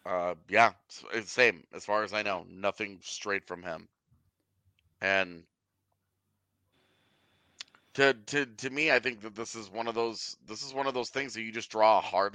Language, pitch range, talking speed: English, 100-125 Hz, 185 wpm